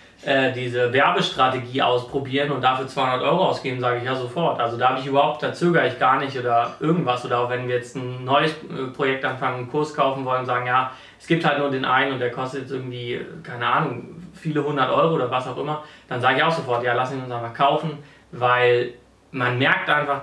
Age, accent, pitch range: 30-49, German, 125-145 Hz